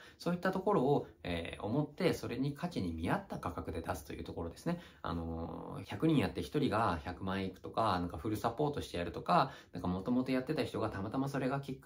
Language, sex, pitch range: Japanese, male, 95-155 Hz